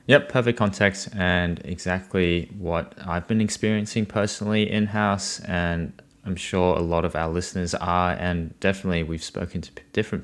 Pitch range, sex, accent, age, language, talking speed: 85-100 Hz, male, Australian, 20-39, English, 150 wpm